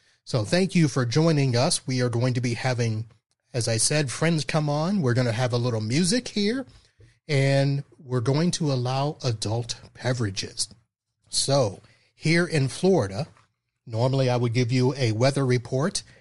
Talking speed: 165 wpm